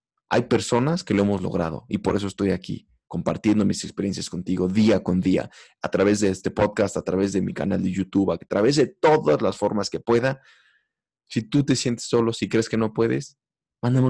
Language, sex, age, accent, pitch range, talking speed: English, male, 20-39, Mexican, 95-115 Hz, 210 wpm